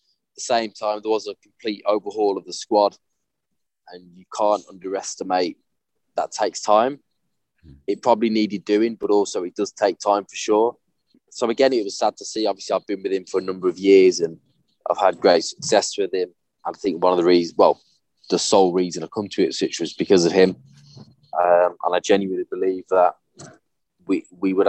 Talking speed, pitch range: 200 wpm, 95-115 Hz